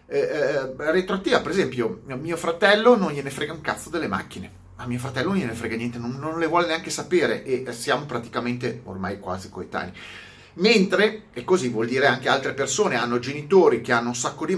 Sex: male